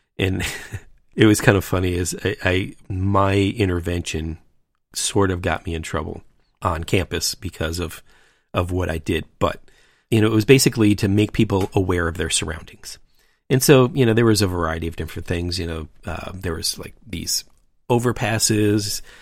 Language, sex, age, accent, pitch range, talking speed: English, male, 40-59, American, 90-110 Hz, 180 wpm